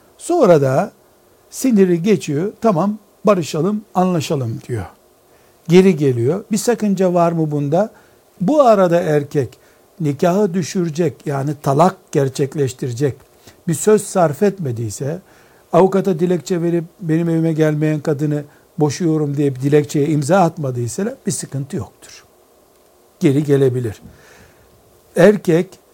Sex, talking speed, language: male, 105 wpm, Turkish